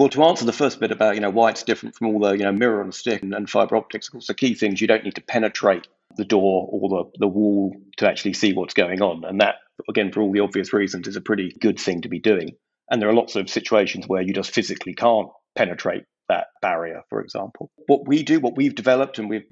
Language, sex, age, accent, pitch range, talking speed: English, male, 40-59, British, 95-110 Hz, 265 wpm